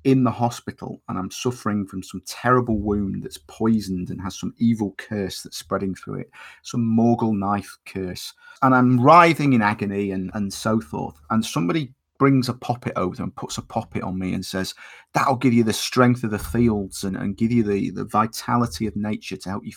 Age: 40-59